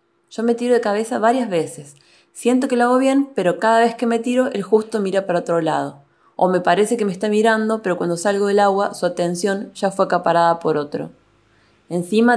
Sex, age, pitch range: female, 20-39, 170-225 Hz